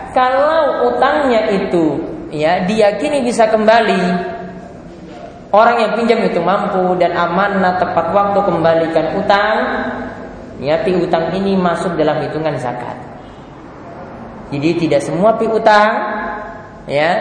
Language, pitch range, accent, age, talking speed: English, 140-205 Hz, Indonesian, 20-39, 105 wpm